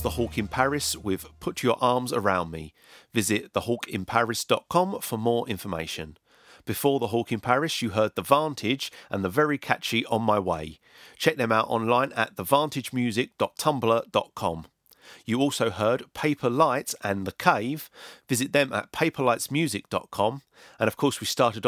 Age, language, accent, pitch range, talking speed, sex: 40-59, English, British, 105-140 Hz, 150 wpm, male